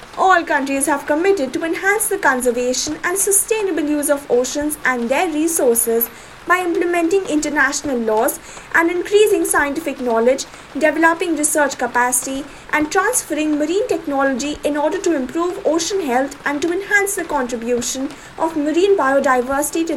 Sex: female